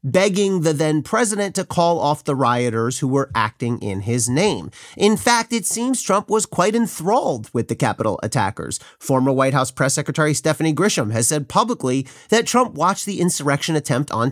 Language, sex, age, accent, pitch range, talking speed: English, male, 30-49, American, 130-185 Hz, 185 wpm